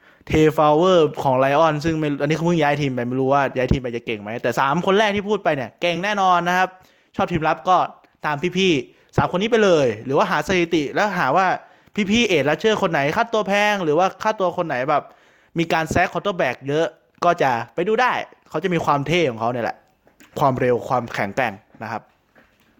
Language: Thai